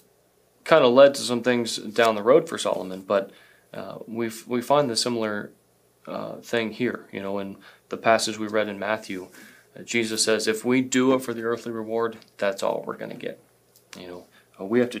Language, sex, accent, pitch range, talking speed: English, male, American, 105-125 Hz, 205 wpm